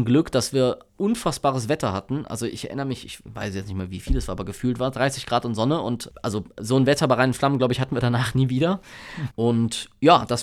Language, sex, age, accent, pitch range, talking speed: German, male, 20-39, German, 105-130 Hz, 255 wpm